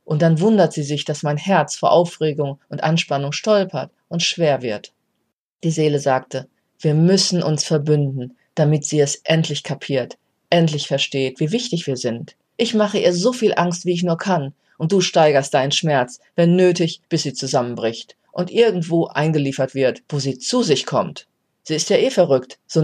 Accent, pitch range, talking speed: German, 145-180 Hz, 180 wpm